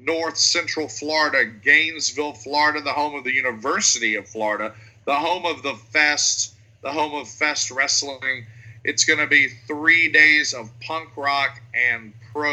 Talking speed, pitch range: 160 wpm, 115-155 Hz